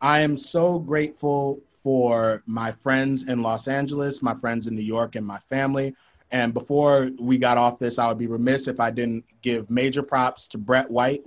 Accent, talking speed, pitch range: American, 195 wpm, 120-140 Hz